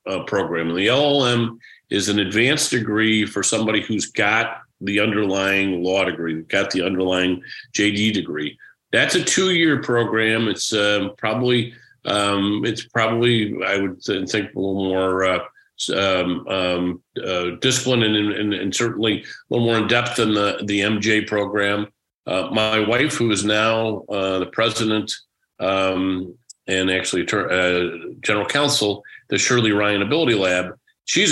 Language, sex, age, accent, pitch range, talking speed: English, male, 50-69, American, 90-110 Hz, 150 wpm